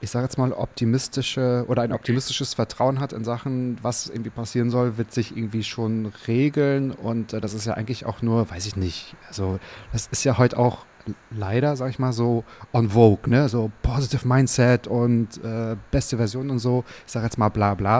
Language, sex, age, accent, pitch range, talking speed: German, male, 30-49, German, 105-125 Hz, 195 wpm